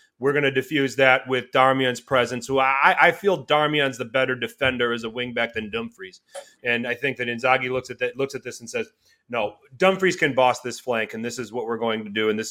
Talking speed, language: 245 wpm, English